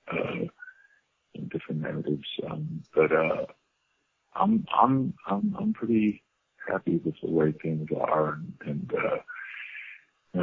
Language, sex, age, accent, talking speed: English, male, 40-59, American, 125 wpm